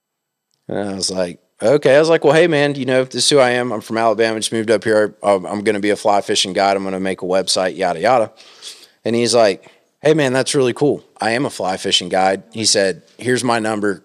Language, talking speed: English, 255 wpm